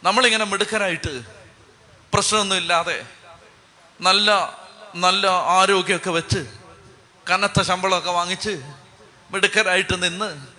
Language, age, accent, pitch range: Malayalam, 30-49, native, 160-210 Hz